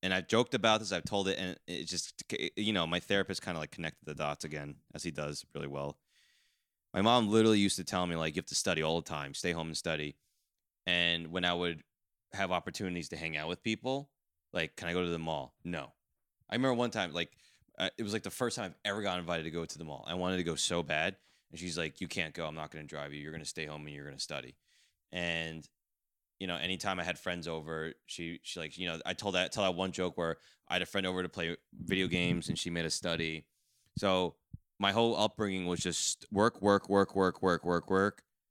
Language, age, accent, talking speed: English, 20-39, American, 250 wpm